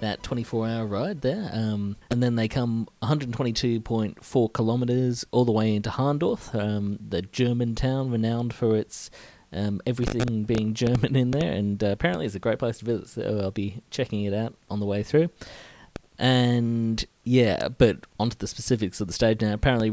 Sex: male